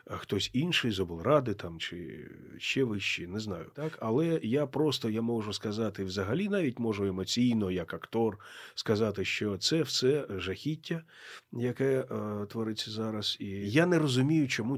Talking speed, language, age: 150 wpm, Ukrainian, 30-49